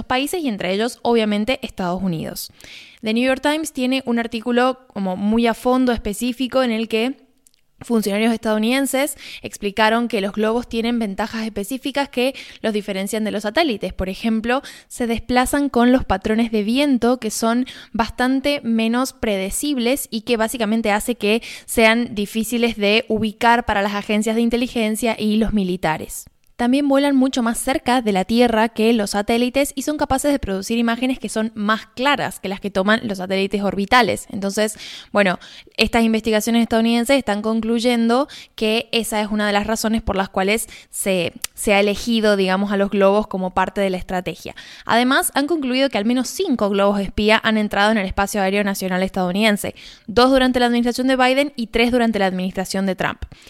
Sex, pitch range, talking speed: female, 205-250 Hz, 175 wpm